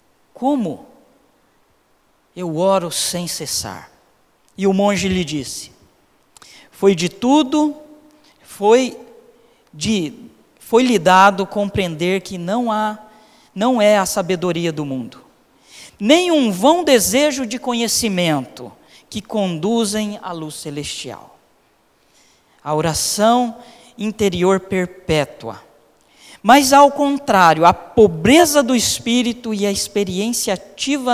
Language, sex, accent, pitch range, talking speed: Portuguese, male, Brazilian, 165-225 Hz, 100 wpm